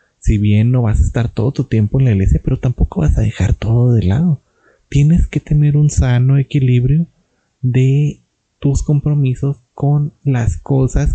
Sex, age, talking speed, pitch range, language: male, 30-49, 170 wpm, 110-135 Hz, Spanish